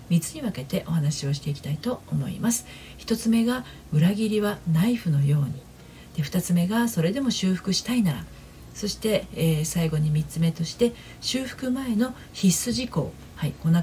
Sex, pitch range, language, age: female, 145-205 Hz, Japanese, 40-59